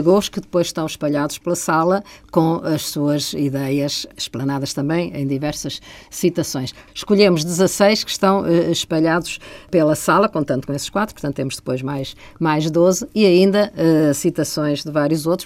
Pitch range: 145-185 Hz